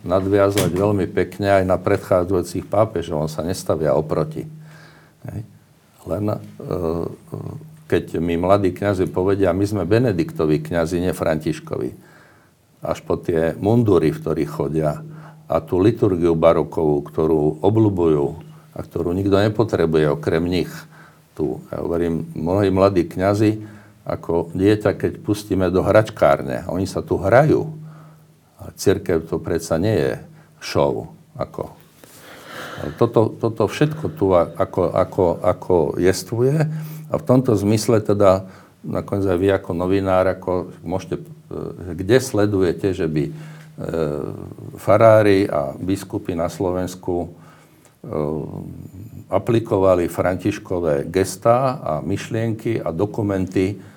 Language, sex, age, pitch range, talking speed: Slovak, male, 60-79, 85-110 Hz, 115 wpm